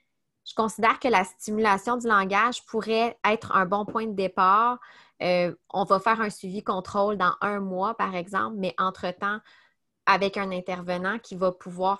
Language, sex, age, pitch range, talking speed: French, female, 20-39, 180-210 Hz, 165 wpm